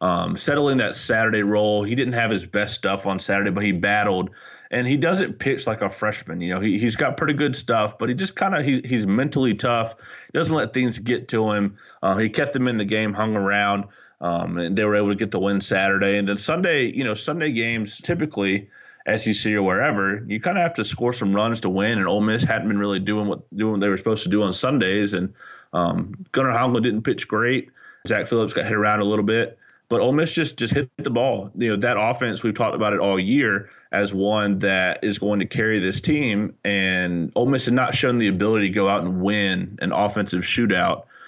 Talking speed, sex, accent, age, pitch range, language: 235 wpm, male, American, 30-49, 100-120 Hz, English